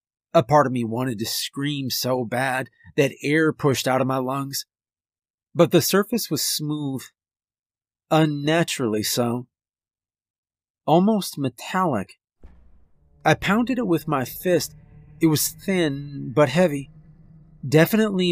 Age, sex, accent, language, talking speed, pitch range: 40-59, male, American, English, 120 wpm, 135-160 Hz